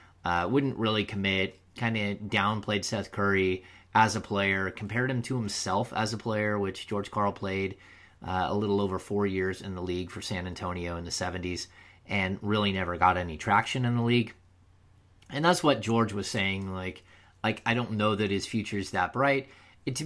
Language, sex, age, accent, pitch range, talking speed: English, male, 30-49, American, 95-115 Hz, 195 wpm